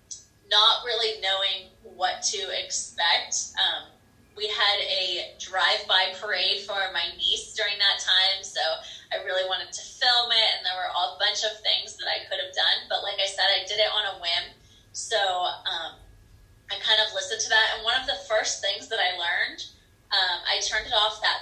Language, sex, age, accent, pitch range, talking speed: English, female, 20-39, American, 180-220 Hz, 200 wpm